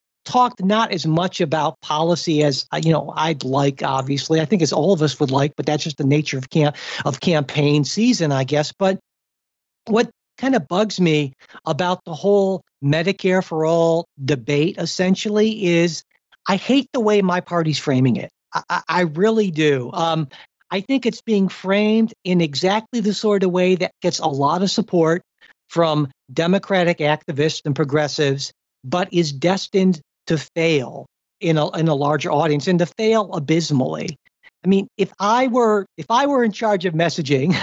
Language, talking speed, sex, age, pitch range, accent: English, 175 wpm, male, 50-69, 155-205 Hz, American